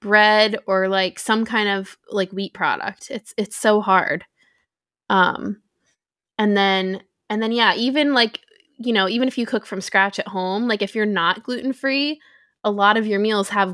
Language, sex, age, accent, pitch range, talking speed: English, female, 20-39, American, 190-225 Hz, 185 wpm